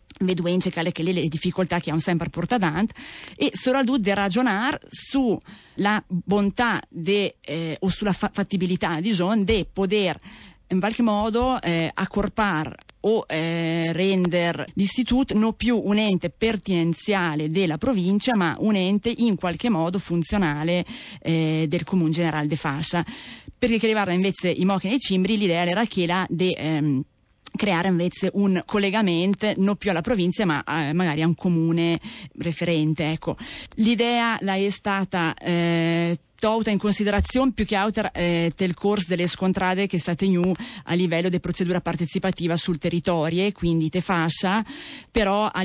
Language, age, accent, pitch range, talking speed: Italian, 30-49, native, 170-205 Hz, 150 wpm